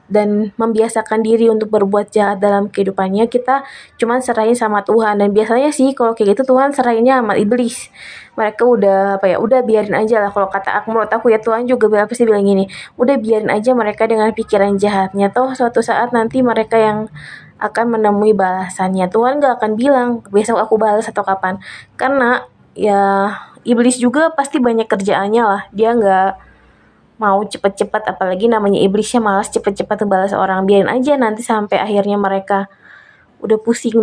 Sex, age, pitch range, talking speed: female, 20-39, 200-230 Hz, 165 wpm